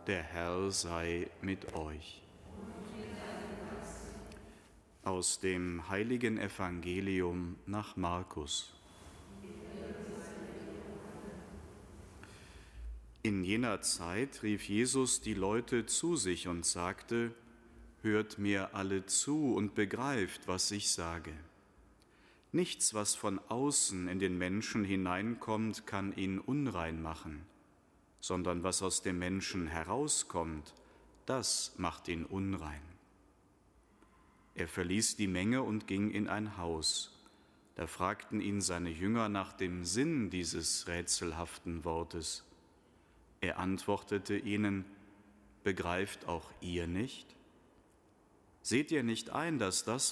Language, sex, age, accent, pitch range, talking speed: German, male, 30-49, German, 85-105 Hz, 105 wpm